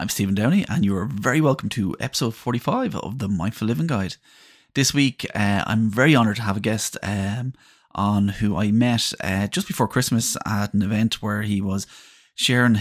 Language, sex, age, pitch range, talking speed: English, male, 30-49, 100-115 Hz, 195 wpm